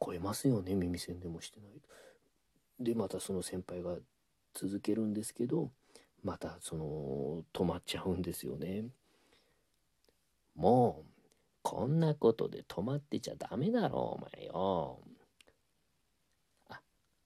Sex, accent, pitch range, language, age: male, native, 90-130 Hz, Japanese, 40-59